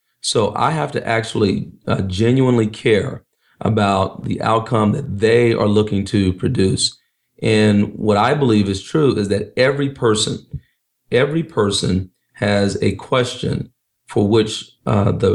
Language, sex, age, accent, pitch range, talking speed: English, male, 40-59, American, 105-115 Hz, 135 wpm